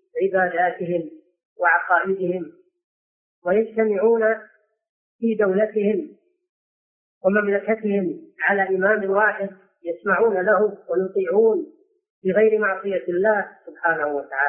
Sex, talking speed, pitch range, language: female, 70 wpm, 195-260 Hz, Arabic